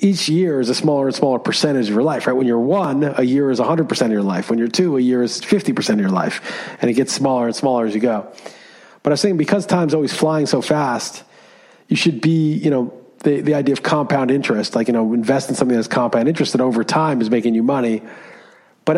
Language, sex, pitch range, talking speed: English, male, 120-155 Hz, 250 wpm